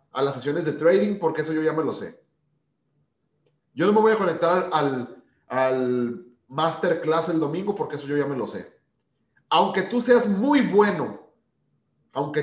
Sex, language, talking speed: male, Spanish, 175 wpm